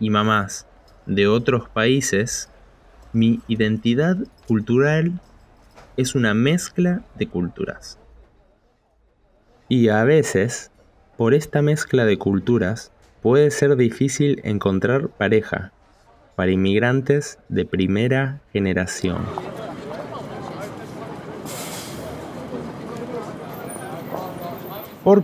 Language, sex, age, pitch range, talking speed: Spanish, male, 20-39, 100-140 Hz, 75 wpm